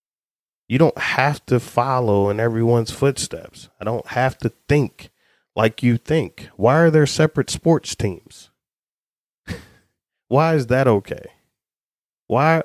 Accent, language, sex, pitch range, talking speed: American, English, male, 110-140 Hz, 130 wpm